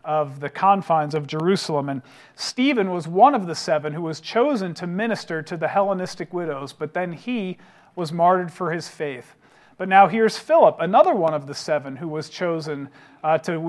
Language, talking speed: English, 190 wpm